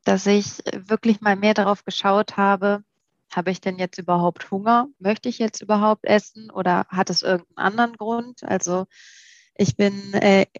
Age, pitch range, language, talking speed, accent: 20-39, 190-225 Hz, German, 165 wpm, German